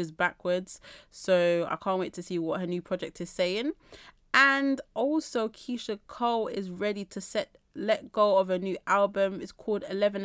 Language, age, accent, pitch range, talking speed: English, 20-39, British, 185-215 Hz, 175 wpm